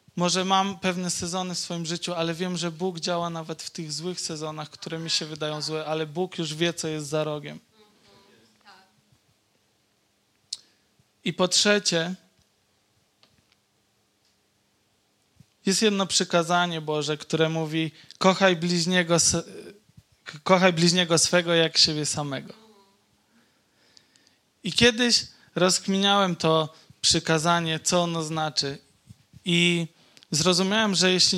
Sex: male